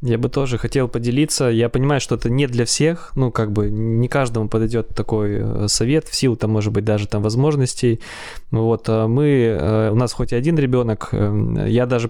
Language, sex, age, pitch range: Russian, male, 20-39, 110-125 Hz